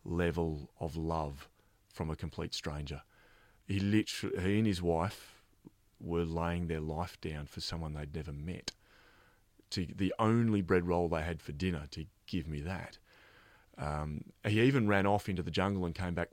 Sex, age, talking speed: male, 30-49, 175 wpm